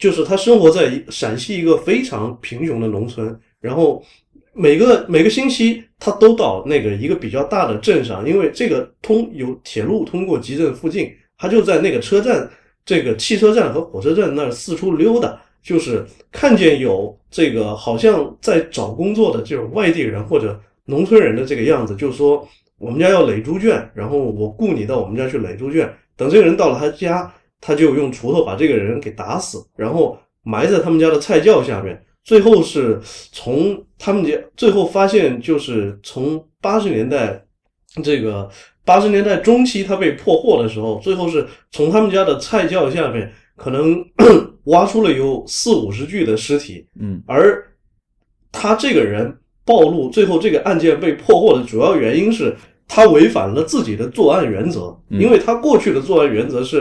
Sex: male